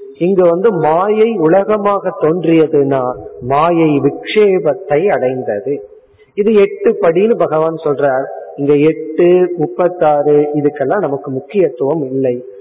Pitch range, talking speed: 150-210 Hz, 95 wpm